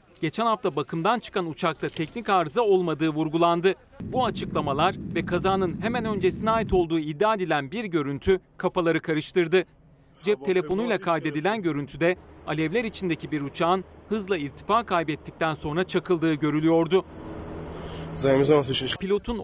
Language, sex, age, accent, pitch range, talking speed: Turkish, male, 40-59, native, 155-190 Hz, 115 wpm